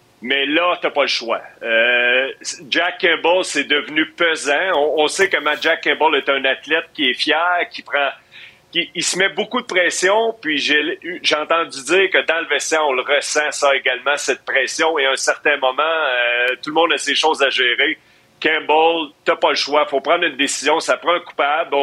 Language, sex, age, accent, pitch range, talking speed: French, male, 40-59, Canadian, 135-160 Hz, 210 wpm